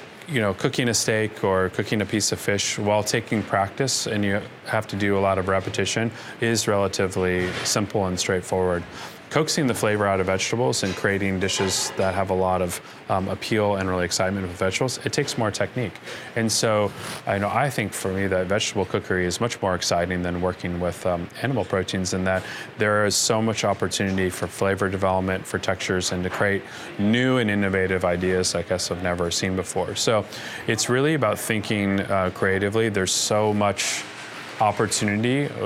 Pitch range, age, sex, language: 95-110 Hz, 20-39, male, English